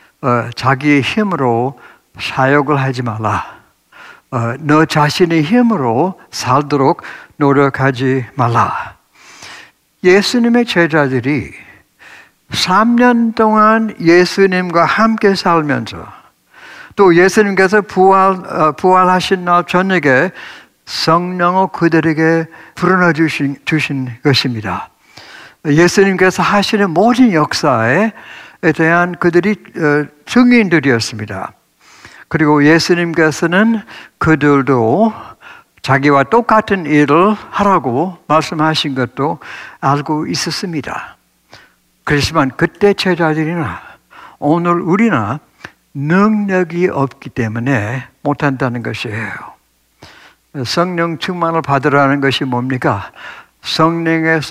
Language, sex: Korean, male